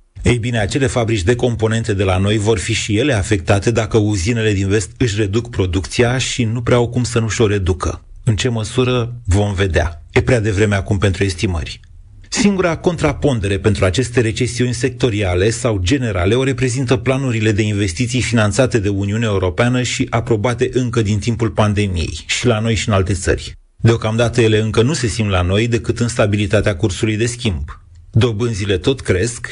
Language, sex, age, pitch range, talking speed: Romanian, male, 30-49, 100-120 Hz, 180 wpm